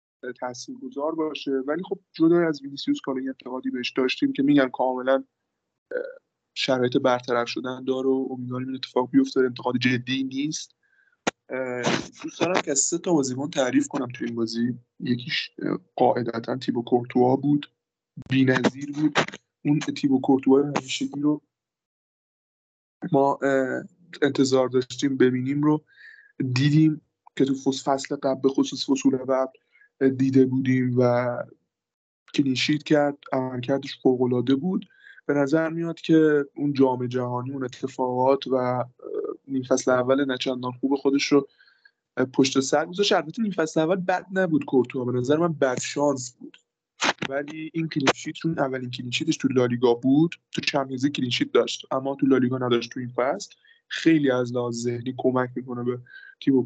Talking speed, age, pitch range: 135 wpm, 20-39, 125-155 Hz